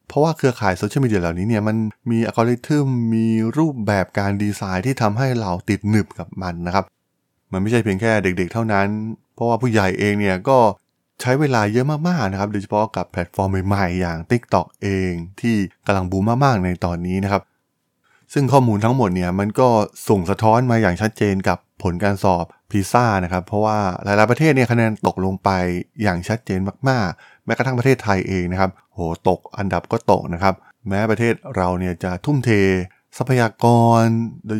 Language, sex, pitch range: Thai, male, 95-120 Hz